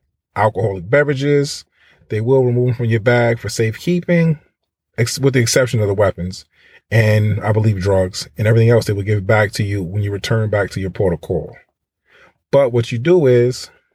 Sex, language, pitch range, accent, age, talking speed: male, English, 100-130 Hz, American, 30-49, 185 wpm